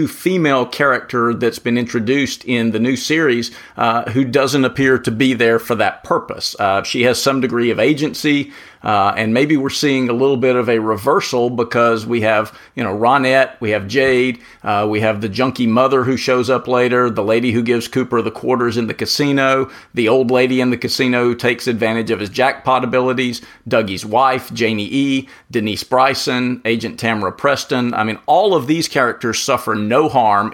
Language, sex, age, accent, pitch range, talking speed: English, male, 50-69, American, 110-135 Hz, 190 wpm